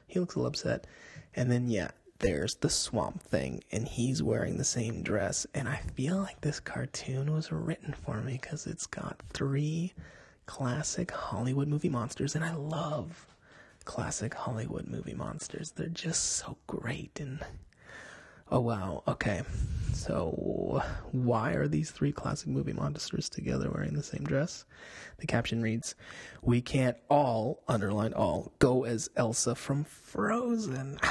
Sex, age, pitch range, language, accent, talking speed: male, 20-39, 120-155 Hz, English, American, 150 wpm